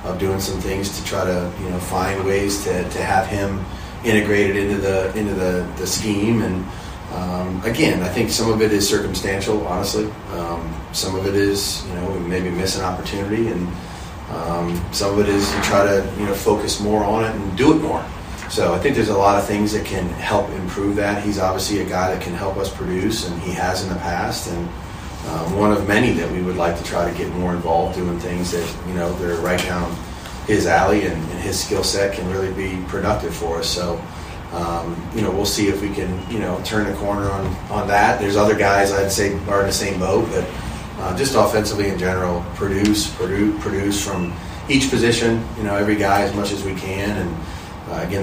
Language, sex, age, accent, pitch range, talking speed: English, male, 30-49, American, 90-100 Hz, 225 wpm